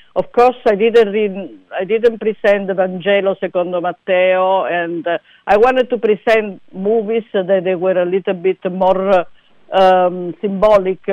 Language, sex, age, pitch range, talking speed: English, female, 50-69, 170-195 Hz, 150 wpm